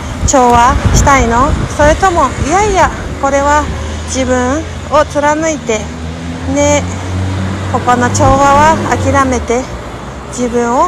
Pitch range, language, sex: 195-280 Hz, Japanese, female